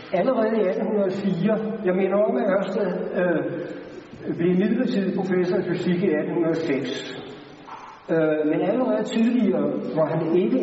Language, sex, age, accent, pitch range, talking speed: Danish, male, 60-79, native, 165-210 Hz, 130 wpm